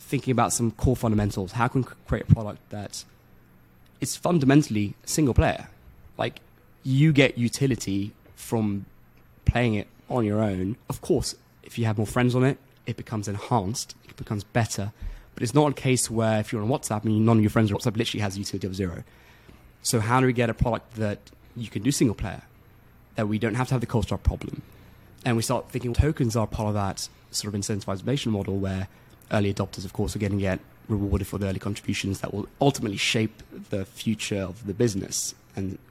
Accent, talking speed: British, 205 wpm